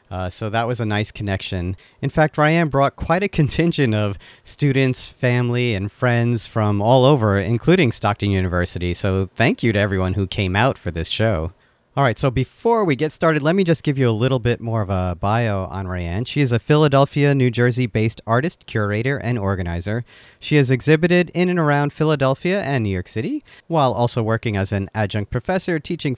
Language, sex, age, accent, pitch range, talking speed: English, male, 40-59, American, 105-145 Hz, 195 wpm